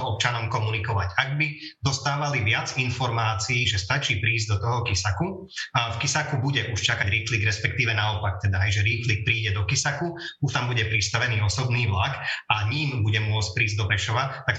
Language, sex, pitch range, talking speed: Slovak, male, 110-135 Hz, 175 wpm